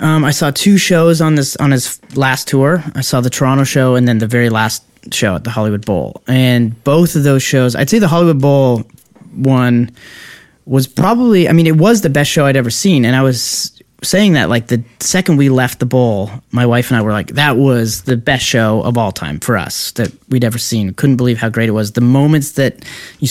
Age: 30-49